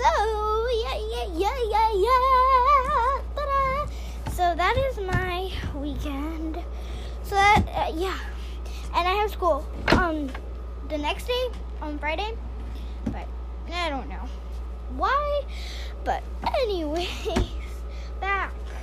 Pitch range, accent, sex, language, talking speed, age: 270-400 Hz, American, female, English, 100 wpm, 10-29